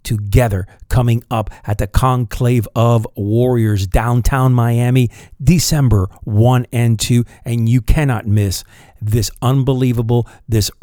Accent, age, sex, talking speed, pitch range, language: American, 50-69, male, 115 wpm, 110-125 Hz, English